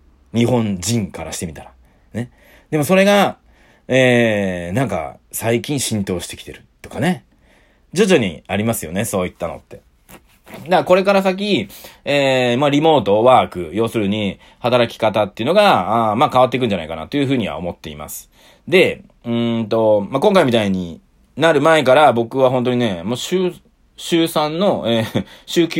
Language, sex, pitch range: Japanese, male, 110-175 Hz